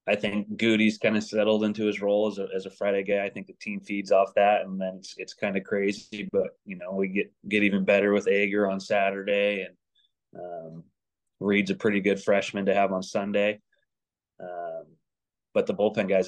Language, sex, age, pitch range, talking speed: English, male, 20-39, 95-105 Hz, 210 wpm